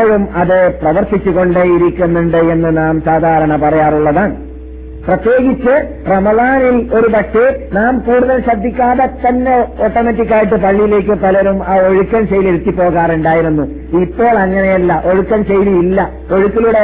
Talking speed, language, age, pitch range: 95 wpm, Malayalam, 50-69, 190-240 Hz